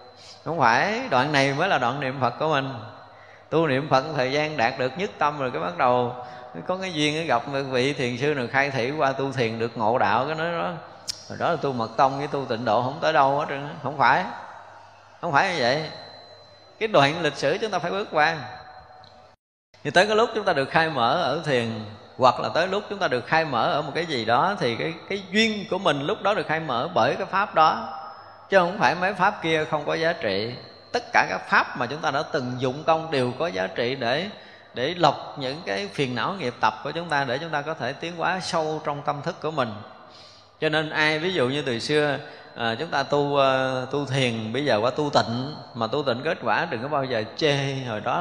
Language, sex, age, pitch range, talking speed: Vietnamese, male, 20-39, 125-155 Hz, 240 wpm